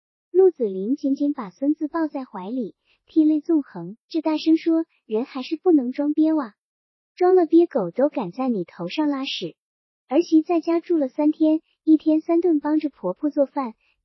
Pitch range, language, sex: 220-305 Hz, Chinese, male